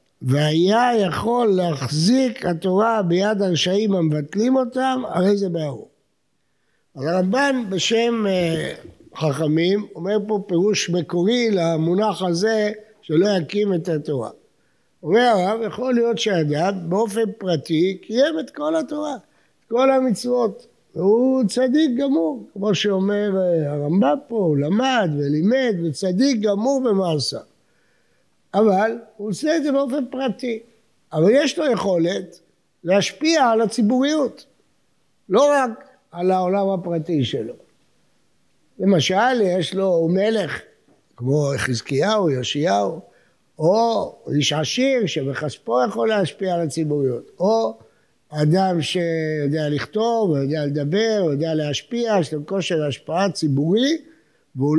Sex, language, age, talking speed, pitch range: male, English, 60-79, 105 wpm, 160-230 Hz